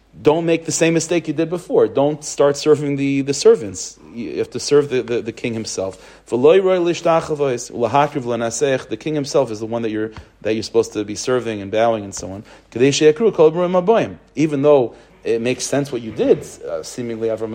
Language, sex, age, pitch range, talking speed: English, male, 40-59, 110-150 Hz, 180 wpm